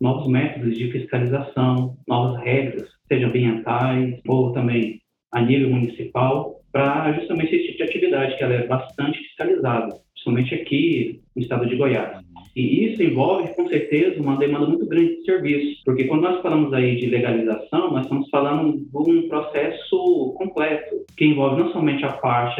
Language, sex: Portuguese, male